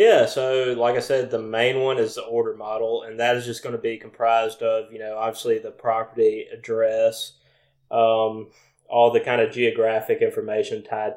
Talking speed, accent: 190 wpm, American